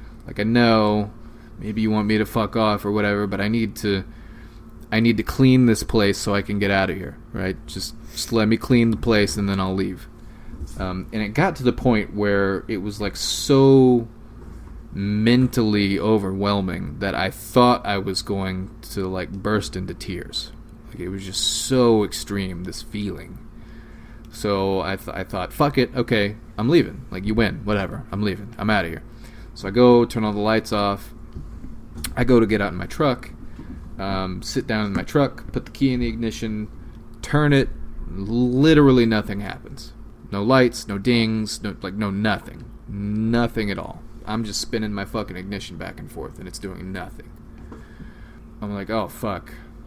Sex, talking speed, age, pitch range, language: male, 185 wpm, 20-39, 100-115 Hz, English